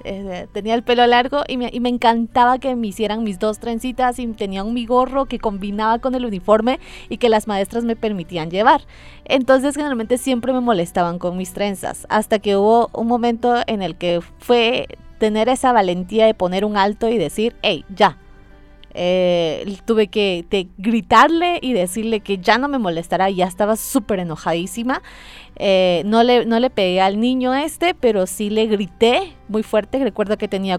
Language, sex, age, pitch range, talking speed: Spanish, female, 30-49, 195-240 Hz, 175 wpm